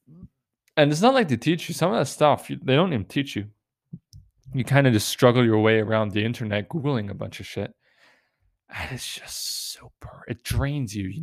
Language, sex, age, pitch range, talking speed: English, male, 20-39, 105-130 Hz, 210 wpm